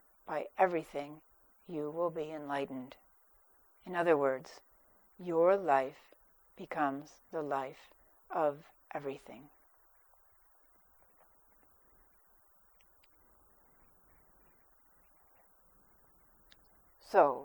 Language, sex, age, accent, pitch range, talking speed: English, female, 60-79, American, 130-165 Hz, 60 wpm